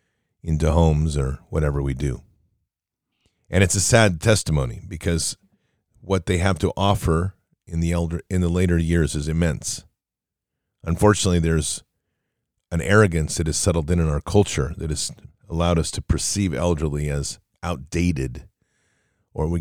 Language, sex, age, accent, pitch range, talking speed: English, male, 40-59, American, 80-95 Hz, 145 wpm